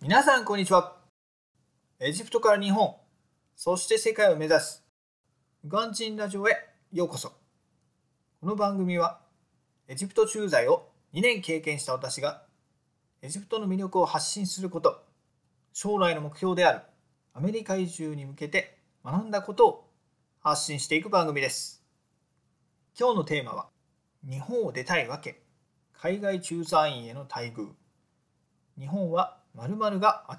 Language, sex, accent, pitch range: Japanese, male, native, 150-195 Hz